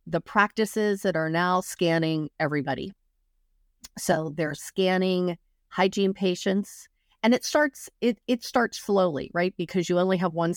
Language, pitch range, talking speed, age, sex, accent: English, 160-195 Hz, 140 wpm, 40-59, female, American